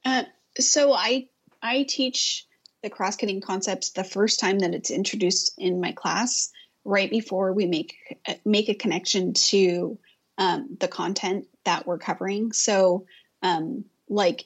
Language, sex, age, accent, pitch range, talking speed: English, female, 30-49, American, 185-220 Hz, 145 wpm